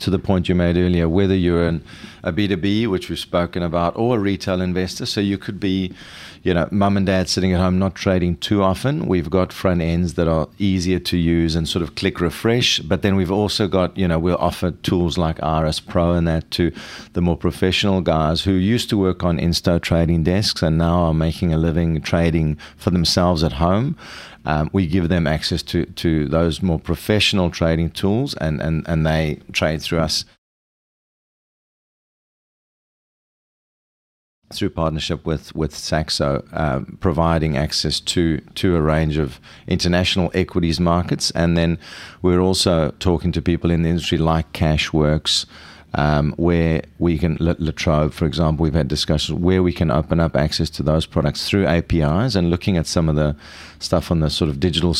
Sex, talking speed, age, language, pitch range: male, 180 wpm, 40-59, English, 80-95 Hz